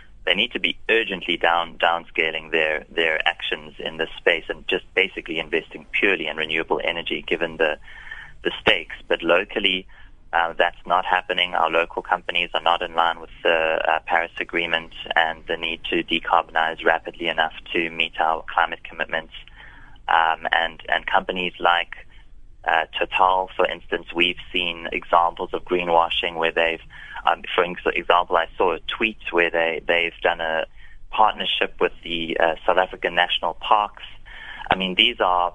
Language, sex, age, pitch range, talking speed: English, male, 20-39, 80-90 Hz, 160 wpm